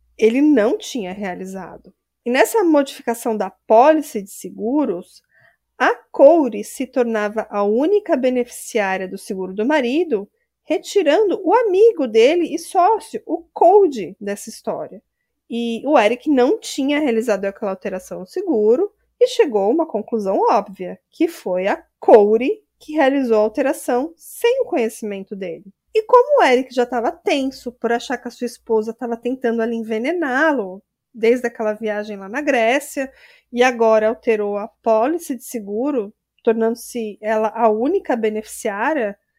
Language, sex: Portuguese, female